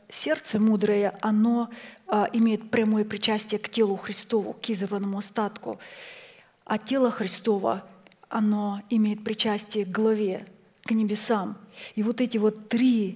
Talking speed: 125 wpm